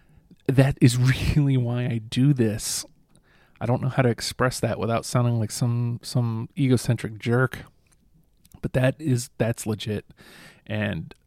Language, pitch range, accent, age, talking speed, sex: English, 115-130 Hz, American, 30-49, 145 wpm, male